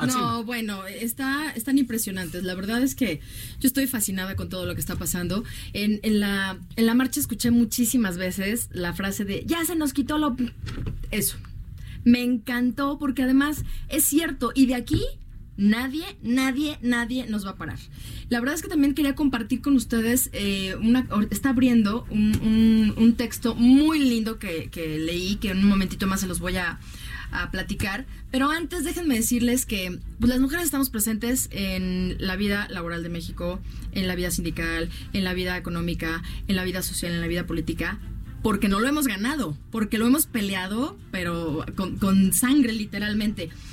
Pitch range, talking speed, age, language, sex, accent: 190-255 Hz, 180 wpm, 20-39, Spanish, female, Mexican